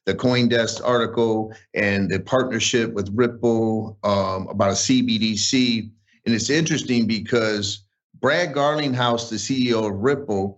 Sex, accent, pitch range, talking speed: male, American, 100-130 Hz, 125 wpm